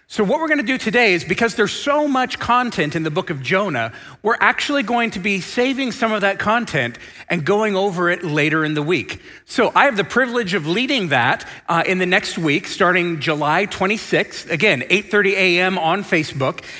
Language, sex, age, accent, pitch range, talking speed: English, male, 40-59, American, 165-220 Hz, 205 wpm